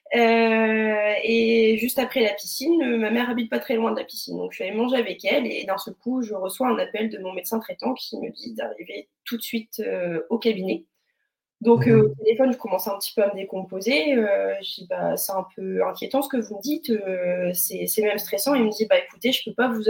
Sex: female